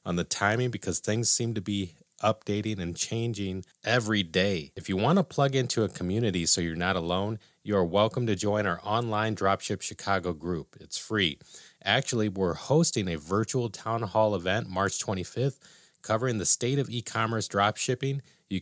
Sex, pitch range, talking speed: male, 95-115 Hz, 175 wpm